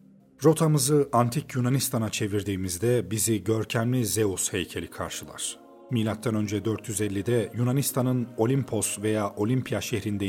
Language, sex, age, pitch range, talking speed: Turkish, male, 40-59, 100-125 Hz, 100 wpm